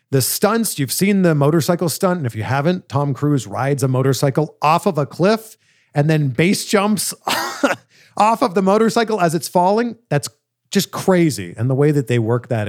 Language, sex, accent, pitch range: English, male, American, 115-160 Hz